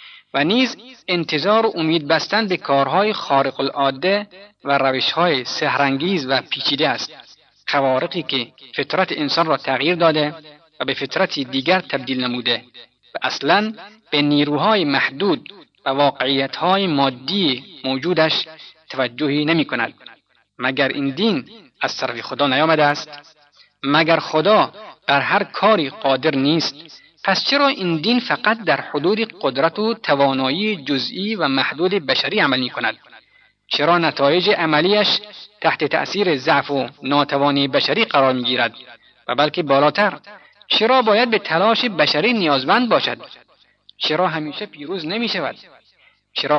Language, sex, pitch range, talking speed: Persian, male, 140-195 Hz, 130 wpm